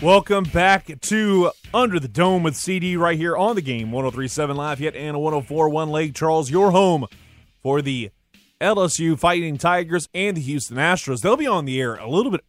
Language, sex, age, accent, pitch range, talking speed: English, male, 20-39, American, 115-180 Hz, 185 wpm